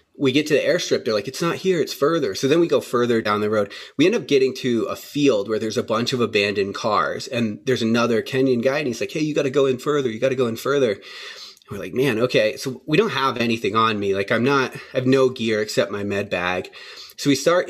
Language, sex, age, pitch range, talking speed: English, male, 30-49, 110-140 Hz, 270 wpm